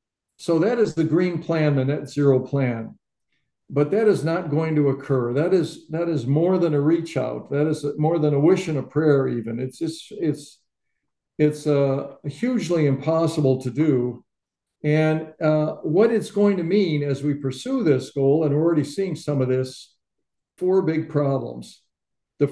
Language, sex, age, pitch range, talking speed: English, male, 60-79, 135-160 Hz, 180 wpm